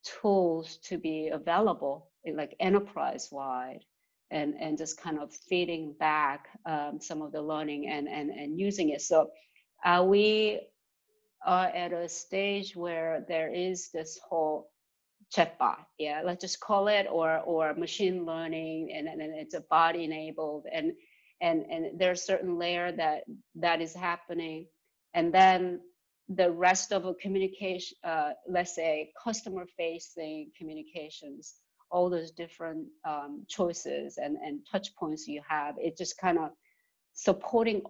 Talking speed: 150 wpm